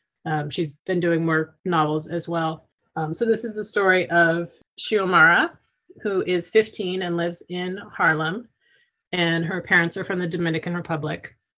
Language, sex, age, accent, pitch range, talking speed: English, female, 30-49, American, 165-190 Hz, 160 wpm